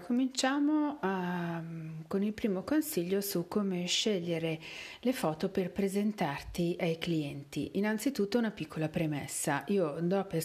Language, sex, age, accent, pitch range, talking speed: Italian, female, 40-59, native, 155-195 Hz, 125 wpm